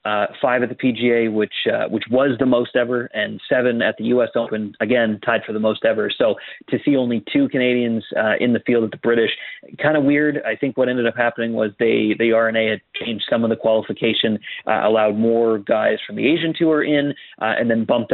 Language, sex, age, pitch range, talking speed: English, male, 30-49, 110-125 Hz, 230 wpm